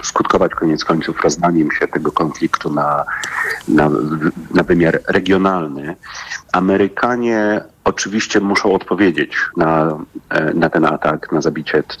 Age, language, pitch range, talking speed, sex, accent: 40-59, Polish, 75-95 Hz, 110 wpm, male, native